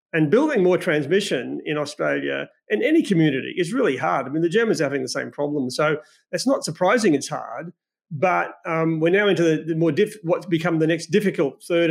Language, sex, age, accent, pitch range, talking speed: English, male, 40-59, Australian, 155-190 Hz, 210 wpm